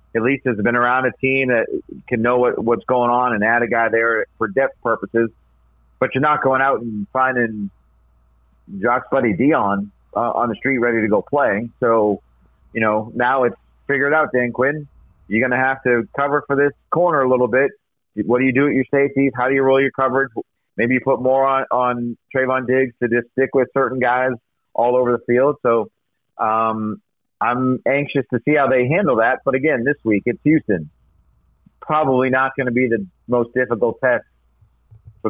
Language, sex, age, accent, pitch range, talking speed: English, male, 40-59, American, 110-130 Hz, 200 wpm